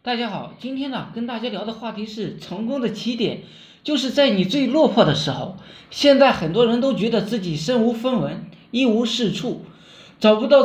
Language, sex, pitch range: Chinese, male, 195-270 Hz